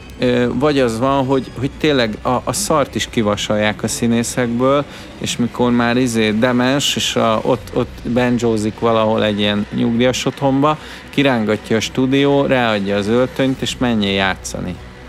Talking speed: 145 wpm